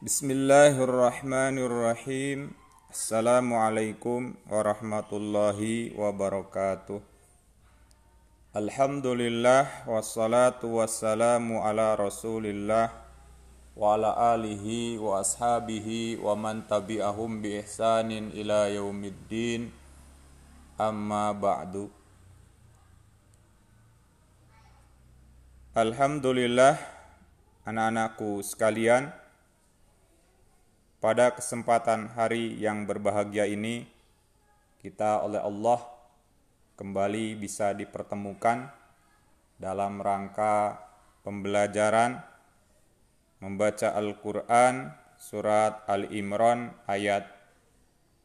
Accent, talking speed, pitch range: native, 55 wpm, 100-115 Hz